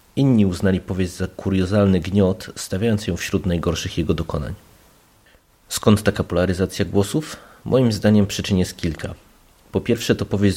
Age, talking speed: 30-49, 140 wpm